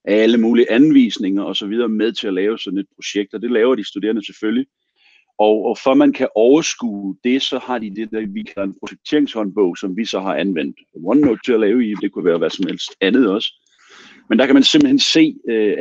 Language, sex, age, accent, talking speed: Danish, male, 40-59, native, 225 wpm